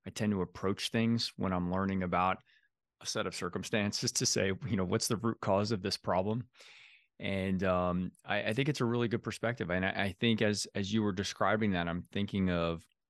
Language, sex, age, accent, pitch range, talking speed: English, male, 20-39, American, 85-105 Hz, 215 wpm